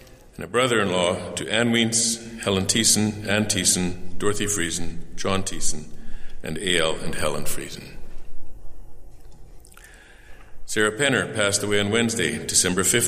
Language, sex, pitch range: English, male, 85-105 Hz